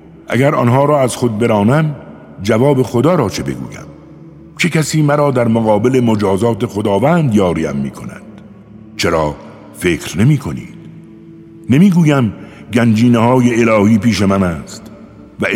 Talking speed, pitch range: 130 wpm, 100-145 Hz